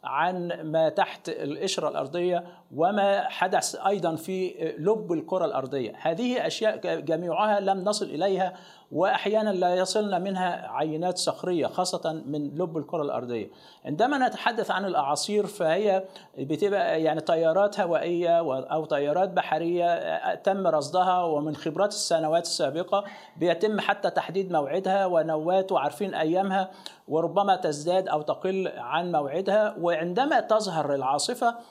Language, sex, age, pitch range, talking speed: Arabic, male, 50-69, 160-205 Hz, 120 wpm